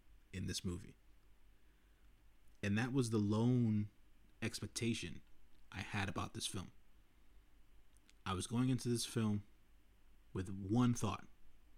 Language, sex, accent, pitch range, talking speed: English, male, American, 100-110 Hz, 115 wpm